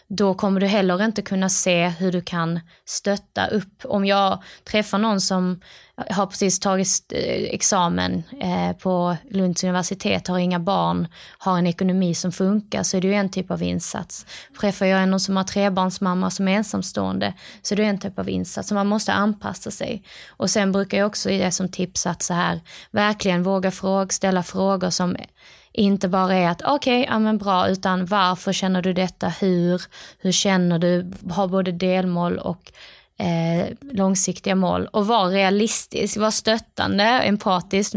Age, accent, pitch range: 20-39, native, 180-200 Hz